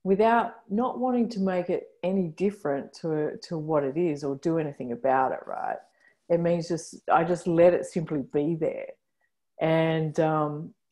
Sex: female